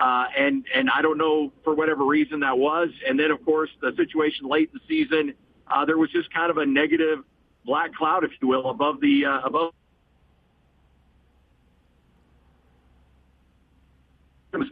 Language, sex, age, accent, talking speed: English, male, 50-69, American, 160 wpm